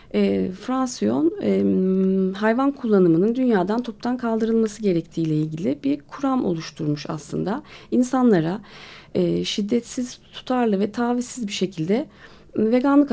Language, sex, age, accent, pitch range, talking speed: Turkish, female, 40-59, native, 180-240 Hz, 90 wpm